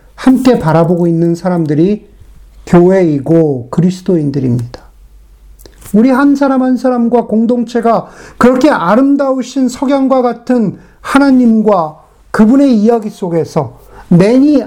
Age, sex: 50-69, male